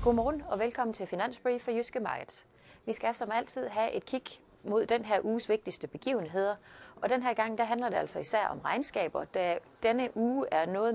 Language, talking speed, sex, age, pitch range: Danish, 205 wpm, female, 30-49, 190-235 Hz